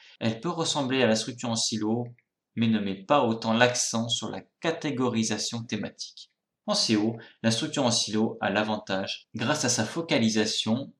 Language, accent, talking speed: French, French, 165 wpm